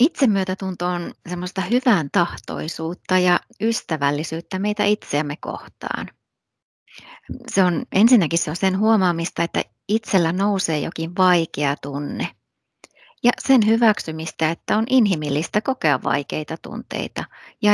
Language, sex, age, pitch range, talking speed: Finnish, female, 30-49, 165-210 Hz, 110 wpm